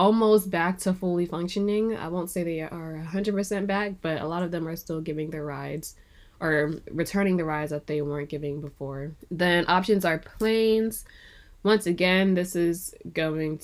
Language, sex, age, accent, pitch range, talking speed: English, female, 10-29, American, 150-185 Hz, 175 wpm